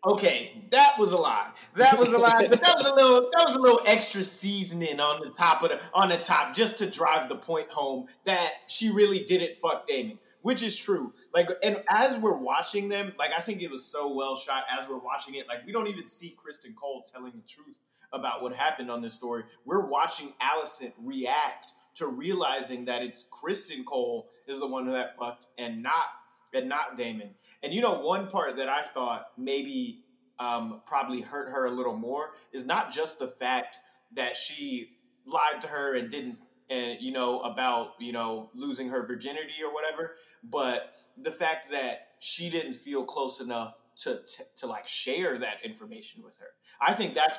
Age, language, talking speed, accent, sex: 30-49, English, 200 wpm, American, male